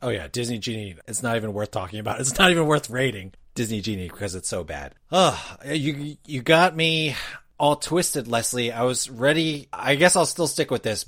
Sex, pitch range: male, 100-130 Hz